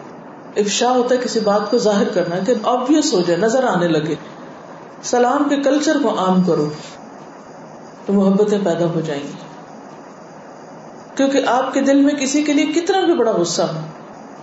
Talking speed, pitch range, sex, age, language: 165 wpm, 190-270 Hz, female, 50-69, Urdu